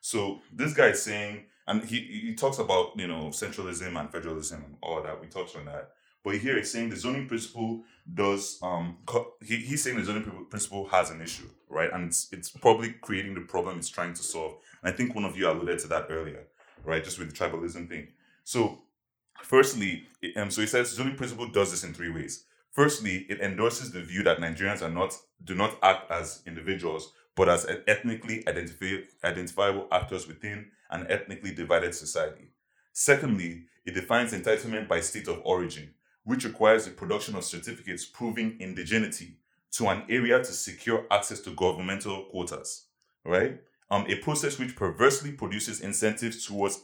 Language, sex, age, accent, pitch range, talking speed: English, male, 20-39, Nigerian, 90-115 Hz, 180 wpm